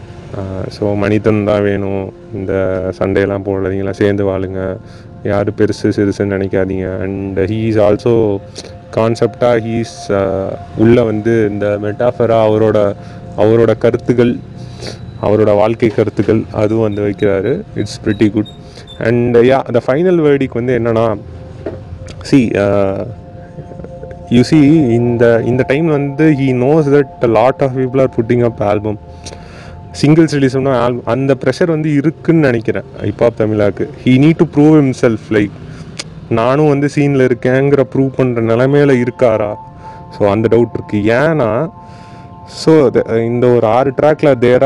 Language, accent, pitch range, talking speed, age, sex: Tamil, native, 105-135 Hz, 140 wpm, 30-49, male